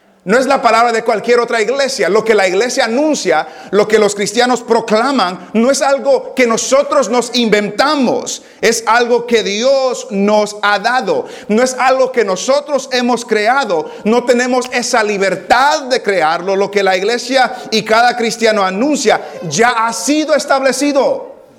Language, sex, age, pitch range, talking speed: English, male, 40-59, 200-250 Hz, 160 wpm